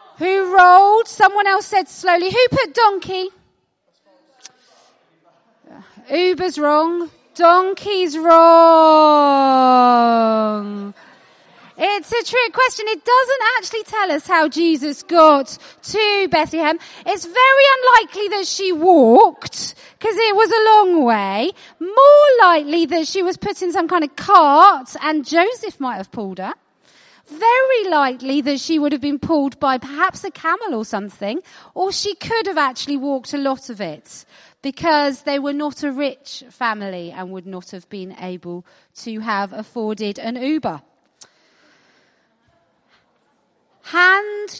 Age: 30-49